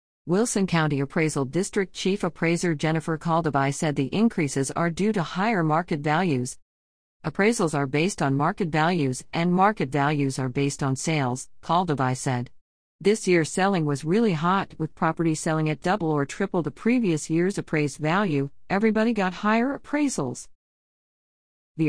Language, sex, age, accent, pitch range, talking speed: English, female, 50-69, American, 145-190 Hz, 150 wpm